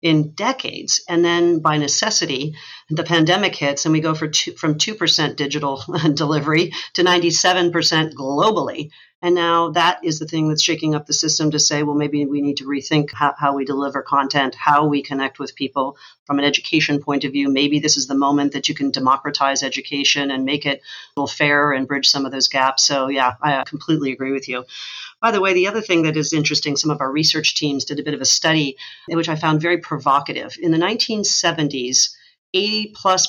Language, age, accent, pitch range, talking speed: English, 40-59, American, 140-165 Hz, 205 wpm